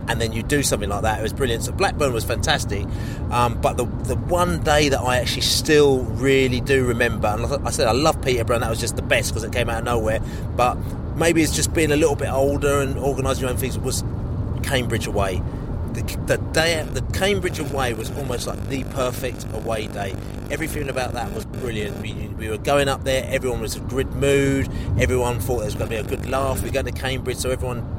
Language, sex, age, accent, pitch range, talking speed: English, male, 30-49, British, 110-130 Hz, 235 wpm